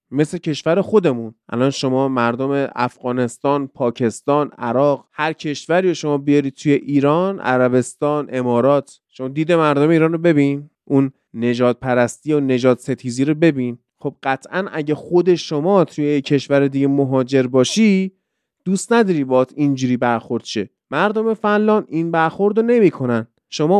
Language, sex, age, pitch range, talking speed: Persian, male, 30-49, 125-175 Hz, 135 wpm